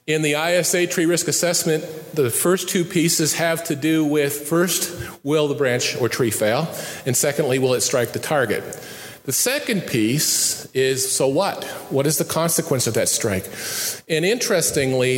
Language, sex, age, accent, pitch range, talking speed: English, male, 40-59, American, 125-165 Hz, 170 wpm